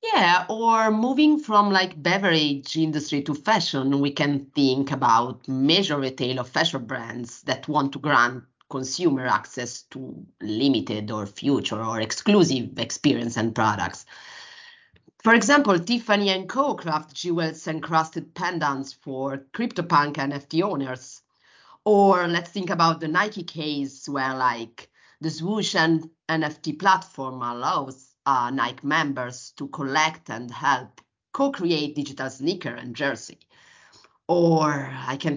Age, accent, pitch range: 30-49, Italian, 135-180 Hz